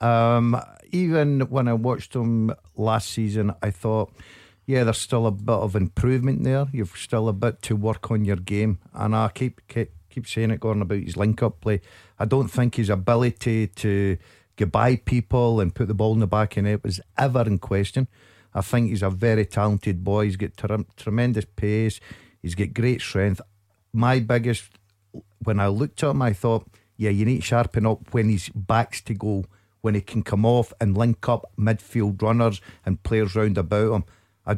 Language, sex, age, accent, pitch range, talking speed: English, male, 50-69, British, 105-120 Hz, 195 wpm